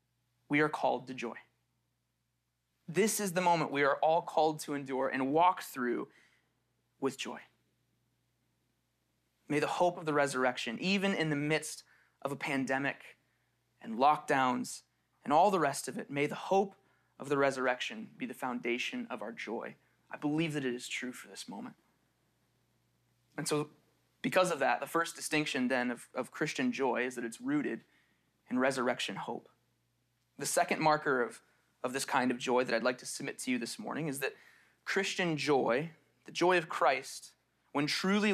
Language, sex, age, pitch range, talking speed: English, male, 20-39, 125-165 Hz, 170 wpm